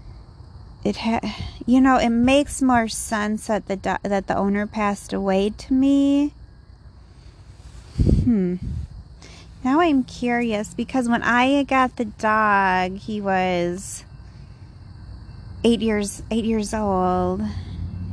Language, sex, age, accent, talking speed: English, female, 30-49, American, 115 wpm